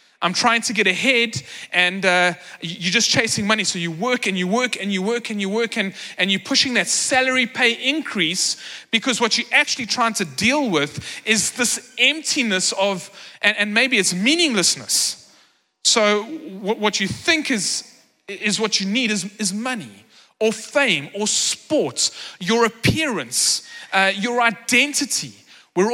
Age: 30-49